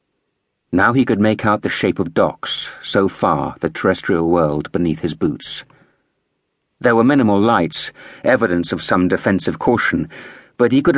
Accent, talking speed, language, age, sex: British, 160 wpm, English, 50-69, male